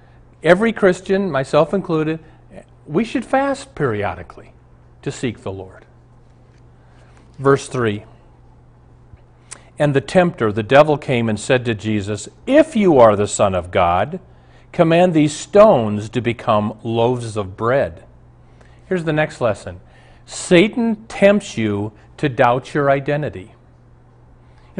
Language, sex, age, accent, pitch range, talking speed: English, male, 50-69, American, 115-170 Hz, 125 wpm